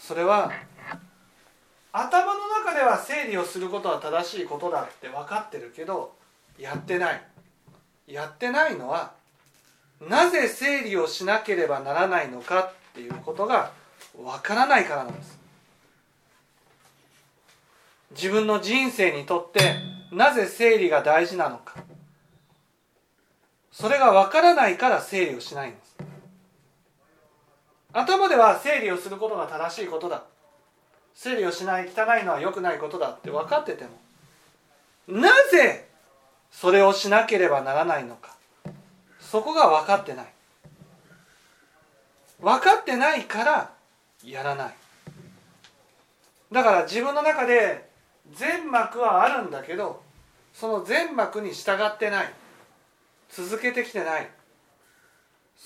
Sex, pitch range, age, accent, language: male, 175-275 Hz, 40-59, native, Japanese